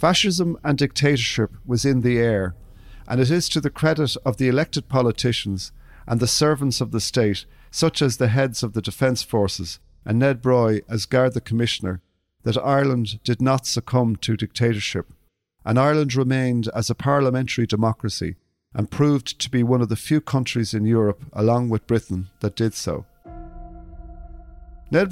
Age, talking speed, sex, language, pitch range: 50-69, 165 wpm, male, English, 105-135 Hz